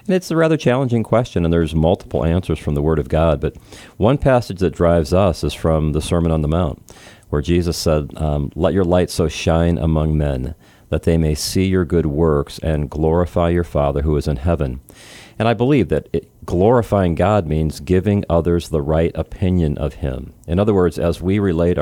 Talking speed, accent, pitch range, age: 205 wpm, American, 80-105 Hz, 40-59